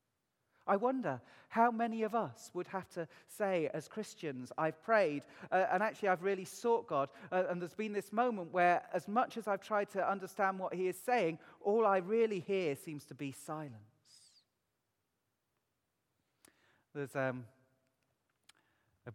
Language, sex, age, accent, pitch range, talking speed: English, male, 40-59, British, 130-185 Hz, 155 wpm